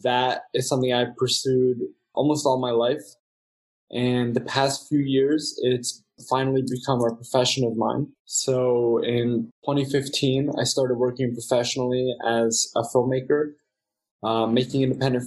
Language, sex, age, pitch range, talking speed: English, male, 20-39, 120-135 Hz, 140 wpm